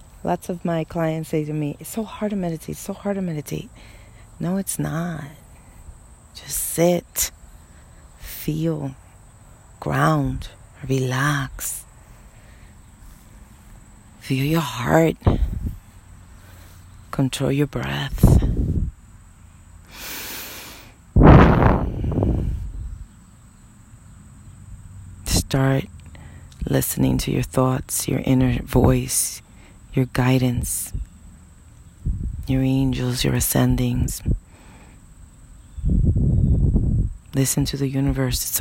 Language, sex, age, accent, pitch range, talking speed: English, female, 40-59, American, 95-145 Hz, 75 wpm